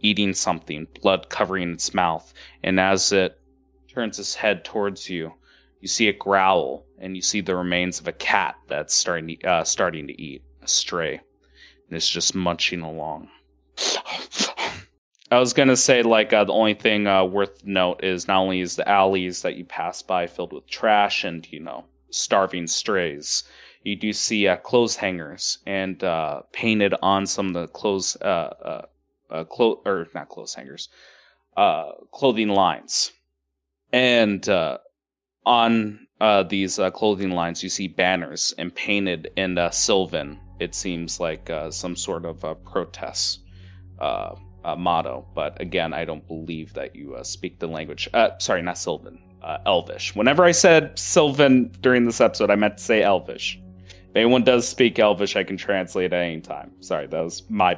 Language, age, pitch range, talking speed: English, 20-39, 85-105 Hz, 170 wpm